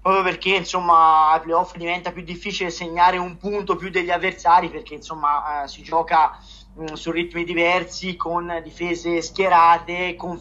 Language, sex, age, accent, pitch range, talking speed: Italian, male, 30-49, native, 170-195 Hz, 150 wpm